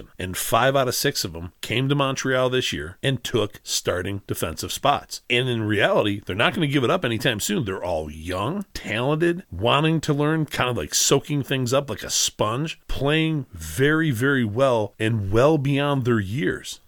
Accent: American